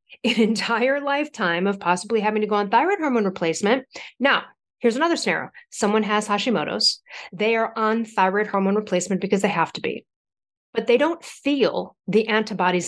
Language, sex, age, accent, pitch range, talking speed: English, female, 40-59, American, 190-235 Hz, 170 wpm